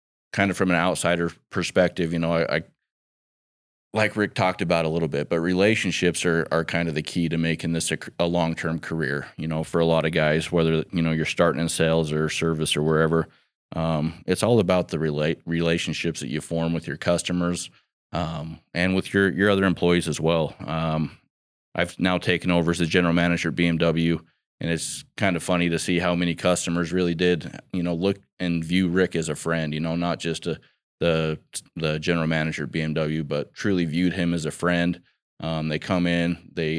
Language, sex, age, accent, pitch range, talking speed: English, male, 20-39, American, 80-90 Hz, 205 wpm